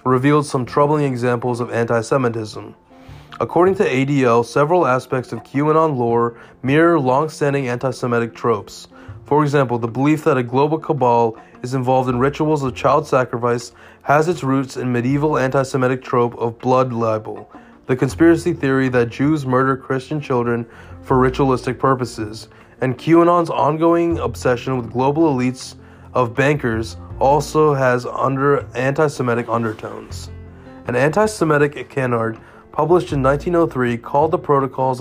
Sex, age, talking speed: male, 20-39, 130 wpm